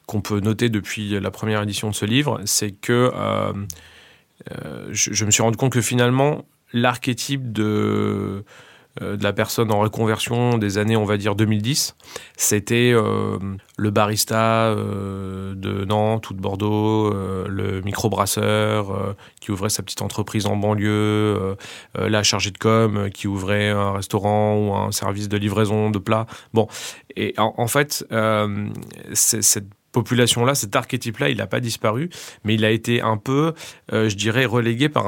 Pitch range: 105-120 Hz